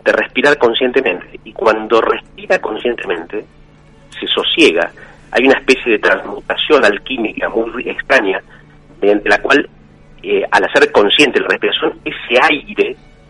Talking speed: 125 wpm